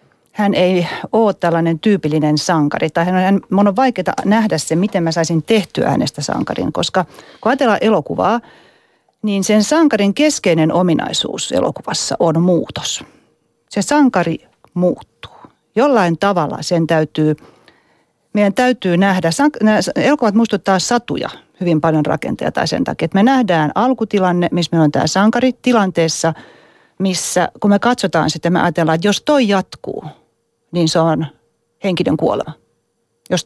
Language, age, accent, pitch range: Finnish, 40-59, native, 170-225 Hz